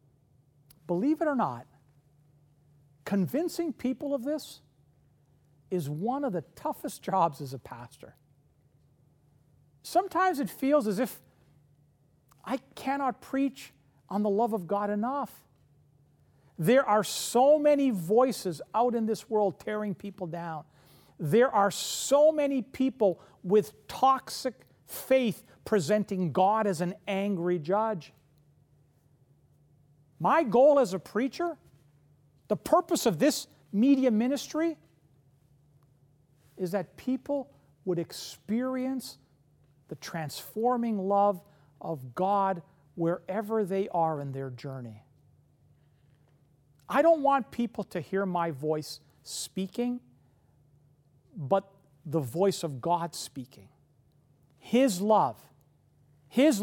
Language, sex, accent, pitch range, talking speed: English, male, American, 145-235 Hz, 110 wpm